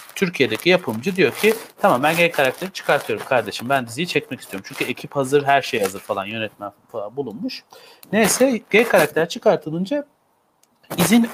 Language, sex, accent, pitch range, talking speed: Turkish, male, native, 130-195 Hz, 155 wpm